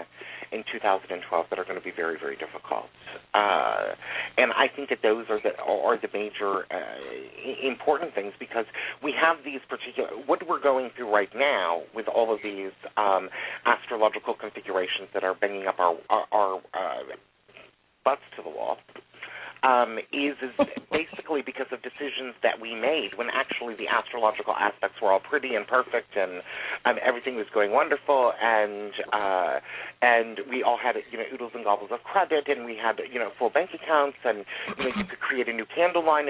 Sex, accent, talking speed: male, American, 185 wpm